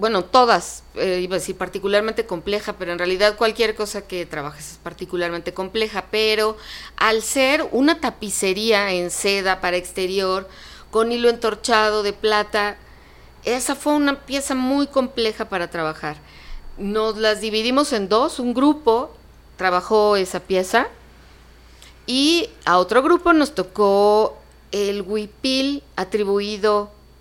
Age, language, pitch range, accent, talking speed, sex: 40-59, Spanish, 175-235 Hz, Mexican, 130 wpm, female